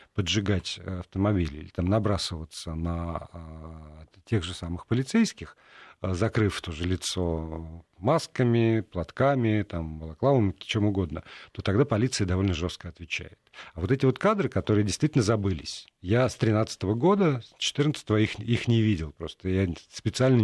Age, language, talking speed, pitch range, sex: 50-69, Russian, 140 wpm, 95-125 Hz, male